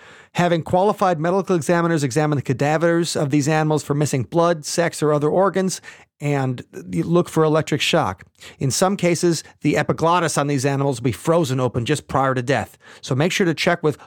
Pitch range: 130-165 Hz